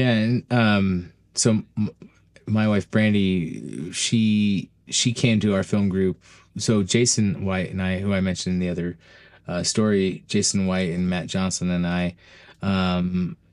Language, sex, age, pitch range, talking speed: English, male, 20-39, 90-105 Hz, 155 wpm